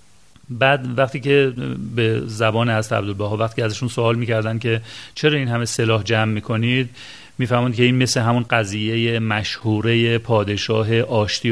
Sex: male